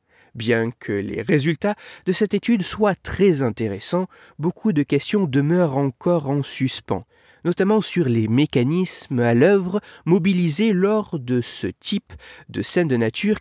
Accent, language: French, French